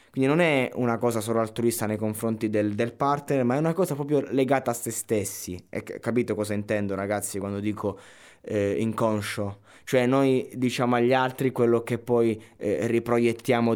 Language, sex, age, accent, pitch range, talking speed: Italian, male, 20-39, native, 105-125 Hz, 170 wpm